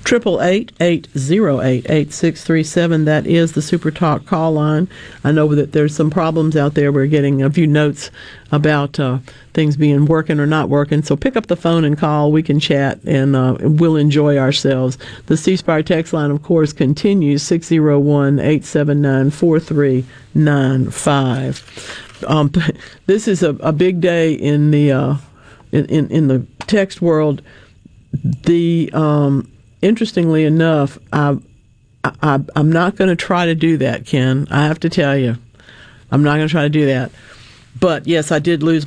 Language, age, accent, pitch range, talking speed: English, 50-69, American, 135-165 Hz, 150 wpm